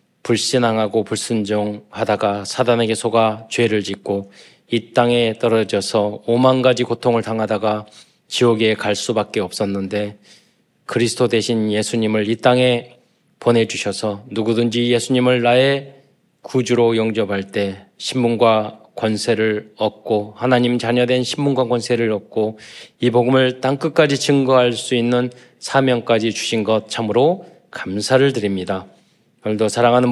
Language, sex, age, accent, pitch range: Korean, male, 20-39, native, 110-125 Hz